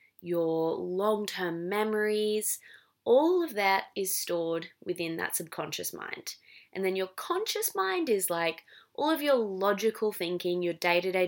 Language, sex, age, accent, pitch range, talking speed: English, female, 20-39, Australian, 165-220 Hz, 140 wpm